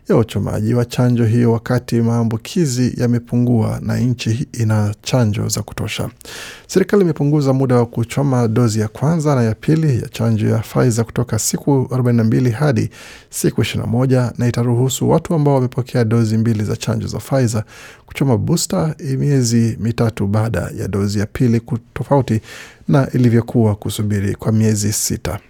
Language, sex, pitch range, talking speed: Swahili, male, 110-130 Hz, 145 wpm